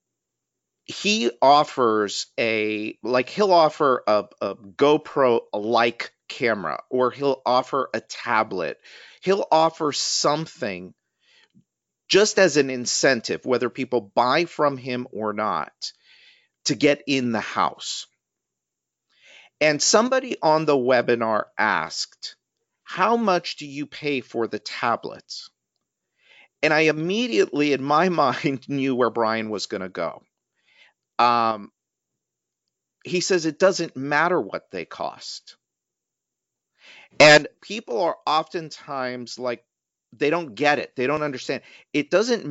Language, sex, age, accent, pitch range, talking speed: English, male, 50-69, American, 120-160 Hz, 120 wpm